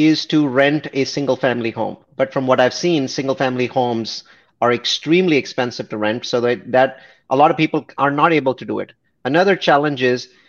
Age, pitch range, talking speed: 30-49, 125-160 Hz, 205 wpm